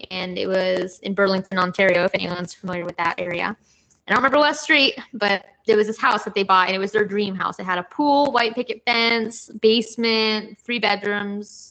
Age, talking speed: 10-29, 210 wpm